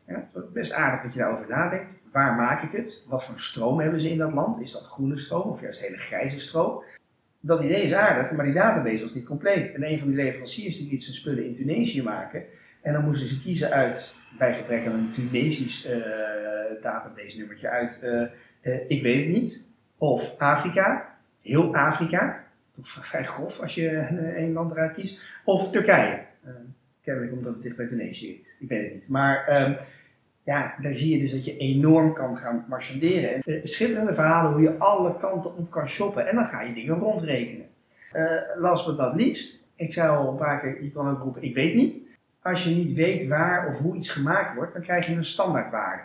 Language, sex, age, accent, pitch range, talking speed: Dutch, male, 30-49, Dutch, 130-175 Hz, 210 wpm